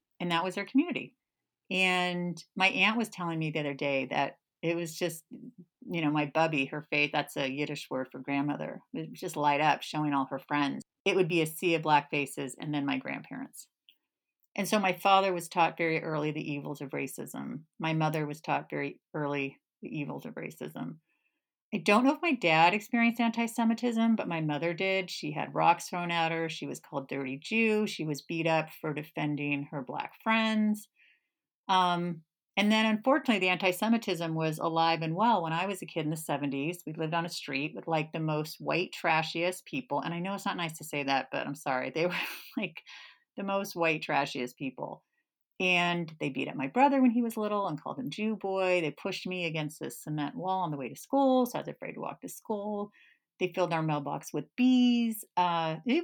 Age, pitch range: 40-59, 150-200 Hz